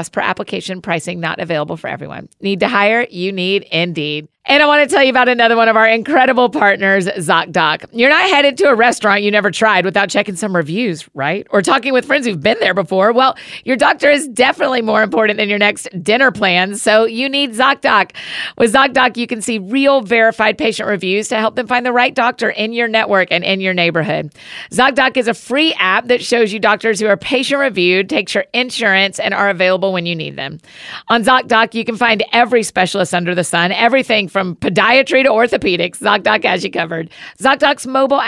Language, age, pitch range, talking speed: English, 40-59, 190-250 Hz, 210 wpm